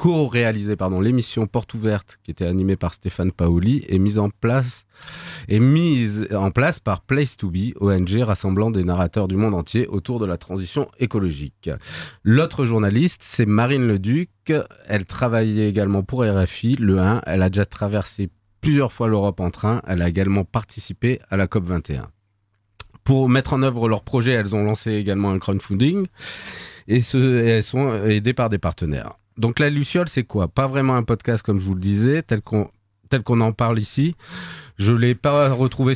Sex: male